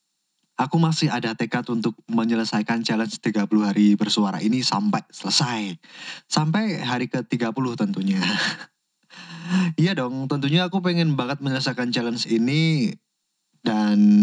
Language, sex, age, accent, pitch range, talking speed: English, male, 20-39, Indonesian, 110-170 Hz, 115 wpm